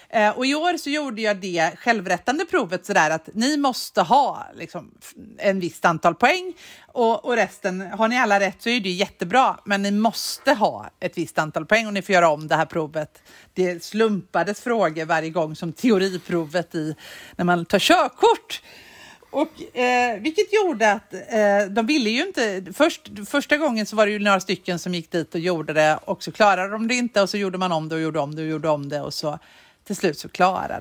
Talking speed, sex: 210 wpm, female